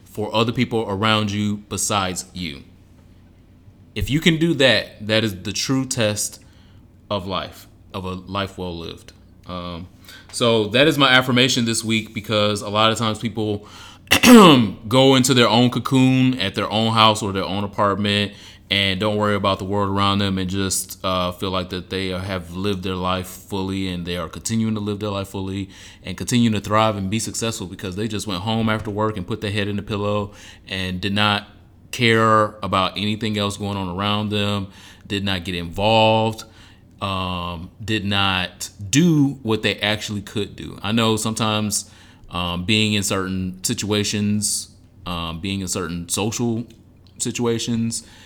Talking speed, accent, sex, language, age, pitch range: 175 wpm, American, male, English, 20-39, 95-110 Hz